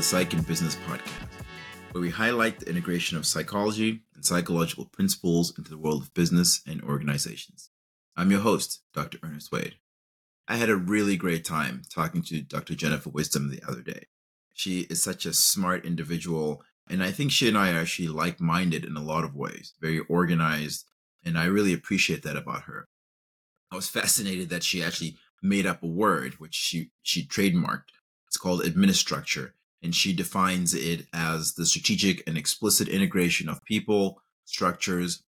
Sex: male